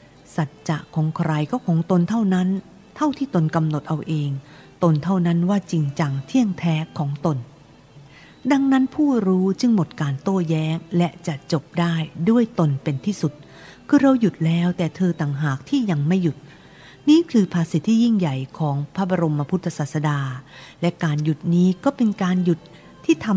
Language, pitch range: Thai, 150-185 Hz